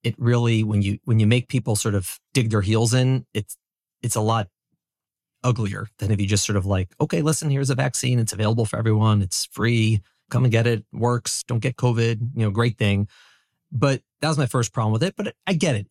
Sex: male